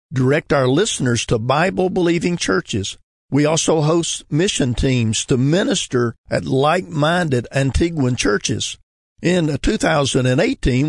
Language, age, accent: English, 50-69, American